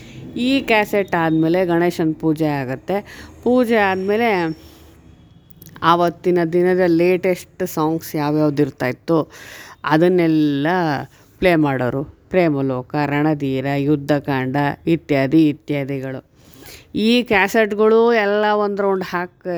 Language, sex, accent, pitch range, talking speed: Kannada, female, native, 150-200 Hz, 90 wpm